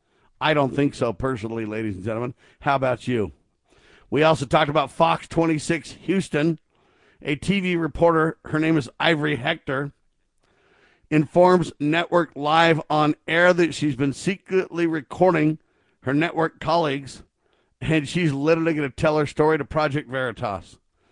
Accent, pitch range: American, 135-170 Hz